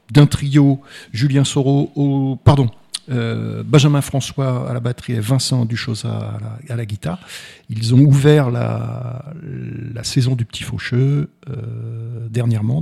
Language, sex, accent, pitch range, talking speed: French, male, French, 110-135 Hz, 145 wpm